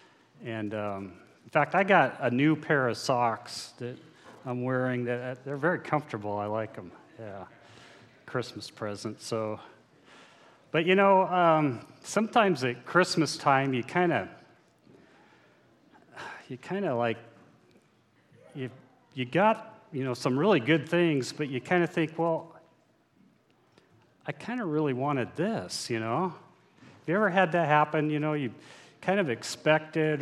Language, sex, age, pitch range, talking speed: English, male, 40-59, 115-155 Hz, 150 wpm